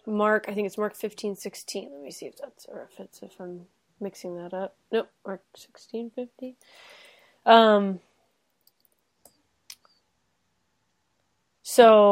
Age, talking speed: 20-39, 130 wpm